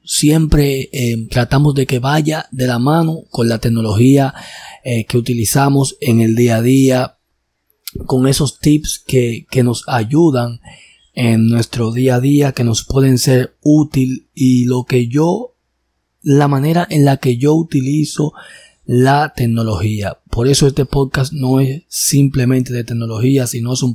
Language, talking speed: Spanish, 155 wpm